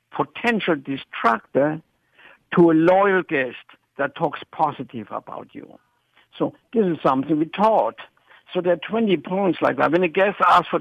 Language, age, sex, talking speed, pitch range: English, 60-79, male, 160 wpm, 145-195 Hz